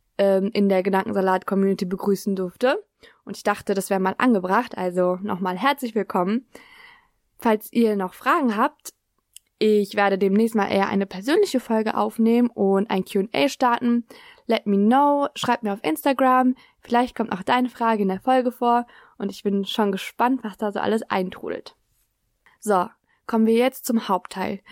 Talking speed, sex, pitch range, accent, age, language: 160 wpm, female, 200-250 Hz, German, 20-39, German